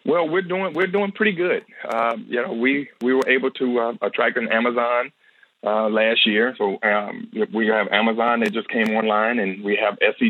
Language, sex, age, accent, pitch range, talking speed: English, male, 40-59, American, 110-135 Hz, 205 wpm